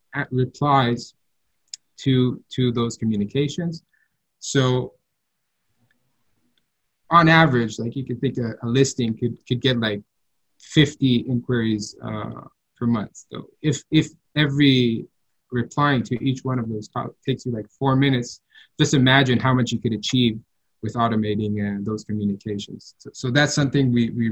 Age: 20-39